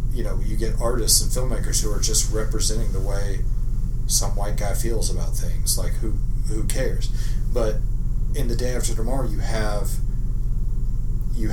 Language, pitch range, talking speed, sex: English, 115-120 Hz, 165 wpm, male